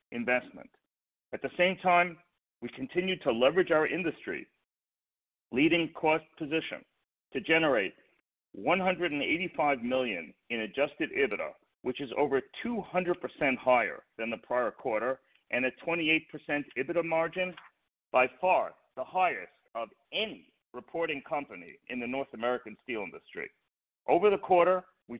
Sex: male